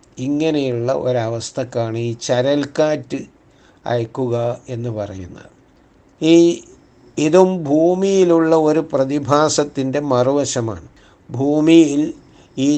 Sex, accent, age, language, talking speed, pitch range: male, native, 60-79, Malayalam, 70 wpm, 120-150 Hz